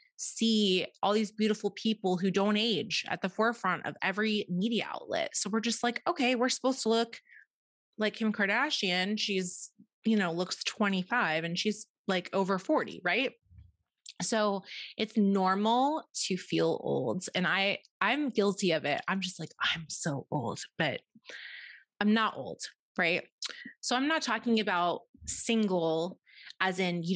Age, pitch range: 20-39, 180-235 Hz